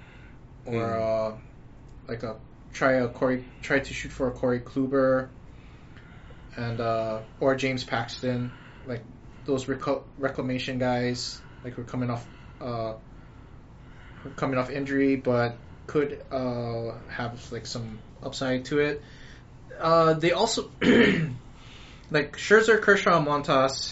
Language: English